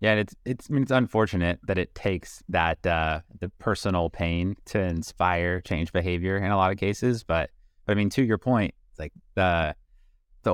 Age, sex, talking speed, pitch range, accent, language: 30-49, male, 200 wpm, 85-110 Hz, American, English